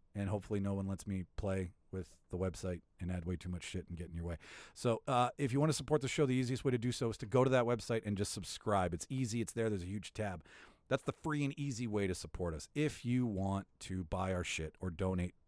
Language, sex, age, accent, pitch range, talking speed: English, male, 40-59, American, 95-125 Hz, 275 wpm